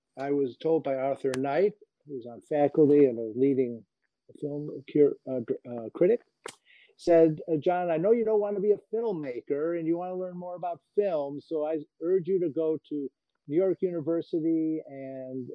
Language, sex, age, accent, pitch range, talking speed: English, male, 50-69, American, 130-175 Hz, 180 wpm